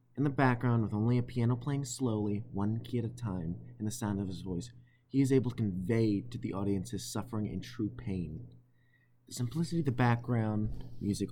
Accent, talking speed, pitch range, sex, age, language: American, 205 wpm, 105-125 Hz, male, 20-39, English